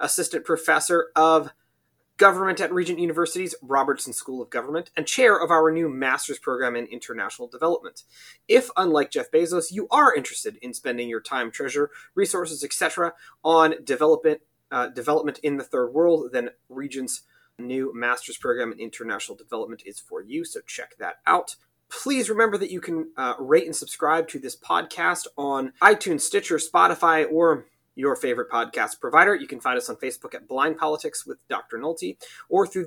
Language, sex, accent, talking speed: English, male, American, 170 wpm